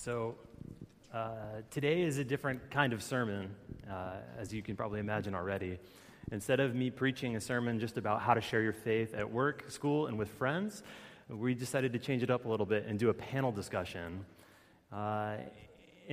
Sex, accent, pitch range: male, American, 105-130 Hz